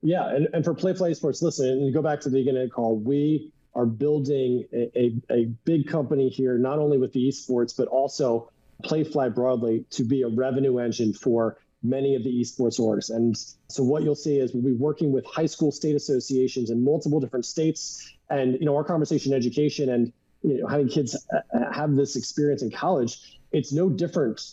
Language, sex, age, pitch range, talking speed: English, male, 30-49, 125-150 Hz, 205 wpm